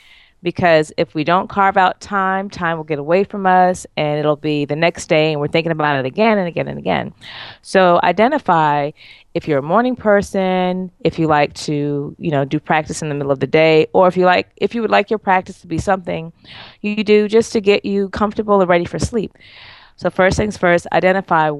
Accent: American